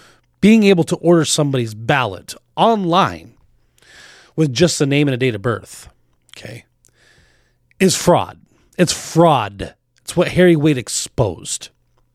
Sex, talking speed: male, 130 wpm